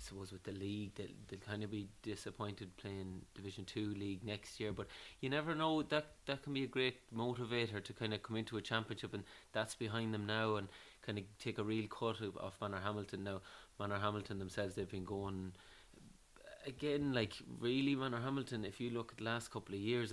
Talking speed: 210 wpm